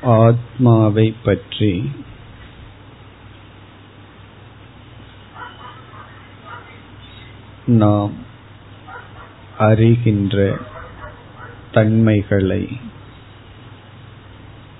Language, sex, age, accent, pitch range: Tamil, male, 50-69, native, 100-115 Hz